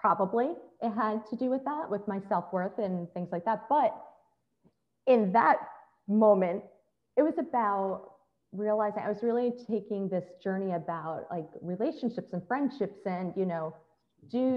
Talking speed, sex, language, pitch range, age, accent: 150 wpm, female, English, 180-230 Hz, 30-49, American